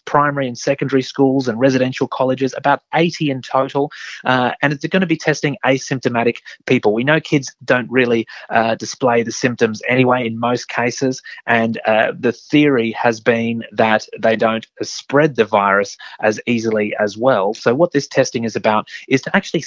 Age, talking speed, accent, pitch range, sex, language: 30-49, 175 wpm, Australian, 115-135 Hz, male, English